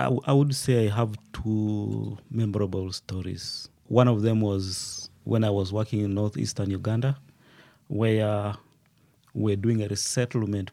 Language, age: English, 30-49